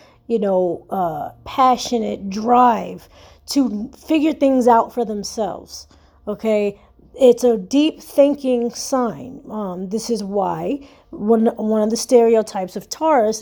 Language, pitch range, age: English, 210-270 Hz, 40-59